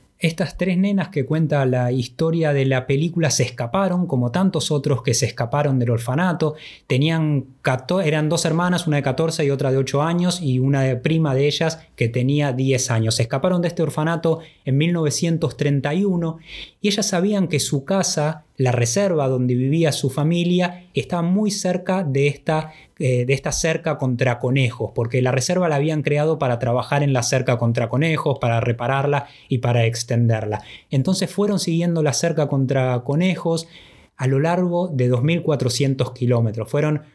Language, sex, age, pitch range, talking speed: Spanish, male, 20-39, 125-160 Hz, 165 wpm